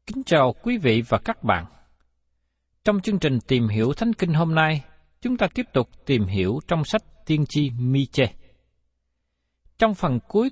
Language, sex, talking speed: Vietnamese, male, 170 wpm